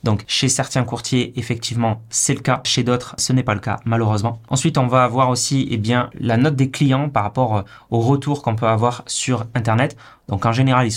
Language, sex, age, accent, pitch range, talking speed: French, male, 20-39, French, 115-130 Hz, 220 wpm